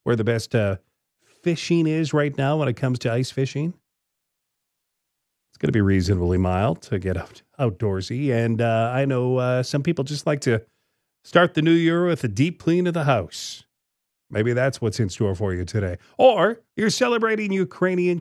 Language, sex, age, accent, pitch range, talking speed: English, male, 40-59, American, 105-150 Hz, 185 wpm